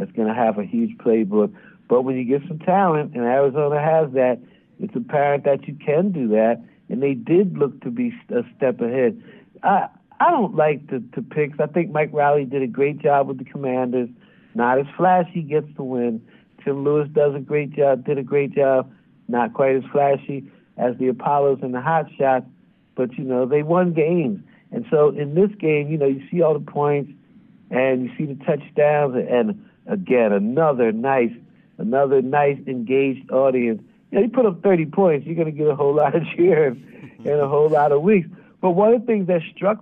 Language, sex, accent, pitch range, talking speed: English, male, American, 135-185 Hz, 210 wpm